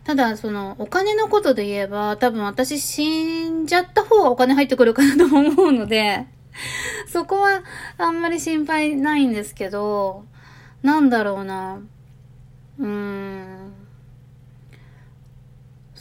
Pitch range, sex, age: 195-290 Hz, female, 20-39